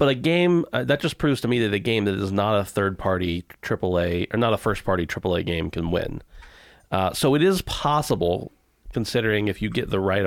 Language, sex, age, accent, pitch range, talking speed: English, male, 40-59, American, 95-120 Hz, 230 wpm